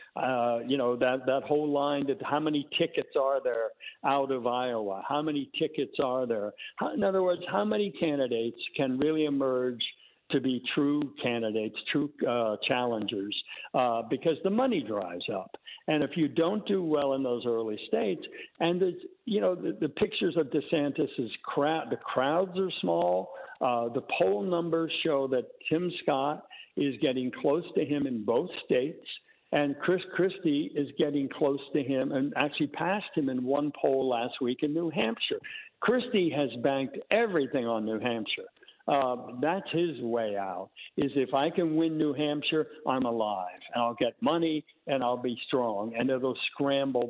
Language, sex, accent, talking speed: English, male, American, 170 wpm